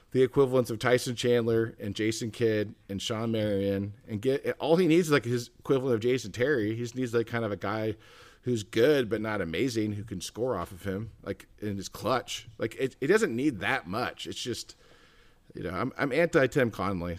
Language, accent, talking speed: English, American, 215 wpm